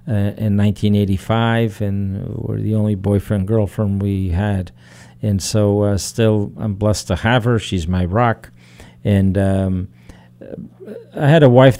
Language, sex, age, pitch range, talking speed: English, male, 50-69, 95-110 Hz, 160 wpm